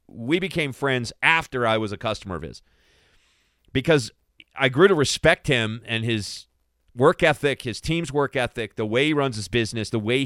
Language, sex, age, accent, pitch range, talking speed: English, male, 40-59, American, 100-125 Hz, 185 wpm